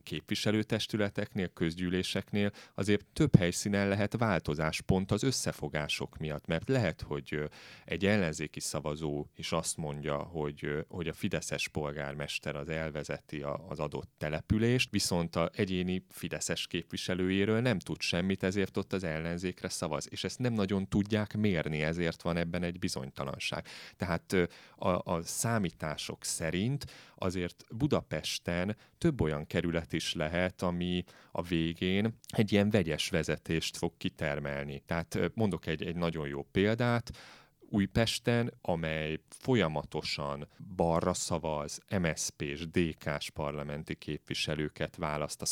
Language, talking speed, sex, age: English, 120 wpm, male, 30-49